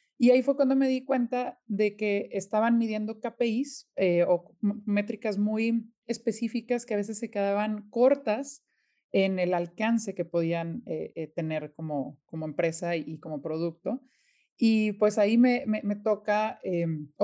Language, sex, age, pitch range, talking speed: Spanish, male, 30-49, 175-215 Hz, 165 wpm